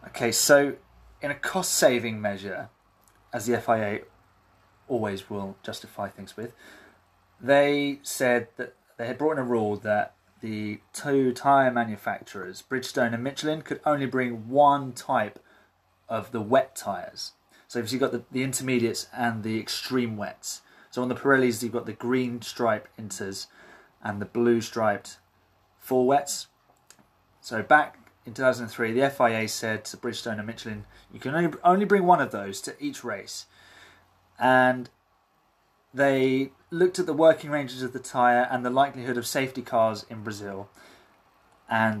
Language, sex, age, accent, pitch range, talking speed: English, male, 20-39, British, 105-135 Hz, 155 wpm